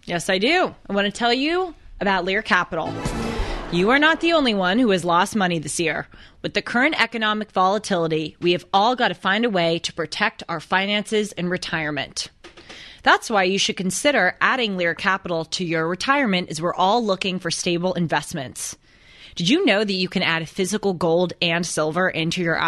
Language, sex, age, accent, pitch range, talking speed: English, female, 20-39, American, 165-215 Hz, 195 wpm